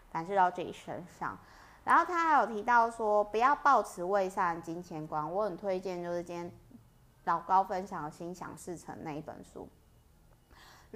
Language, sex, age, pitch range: Chinese, female, 30-49, 165-215 Hz